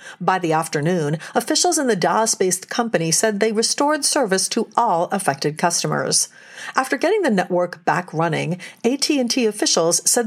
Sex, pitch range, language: female, 165-235 Hz, English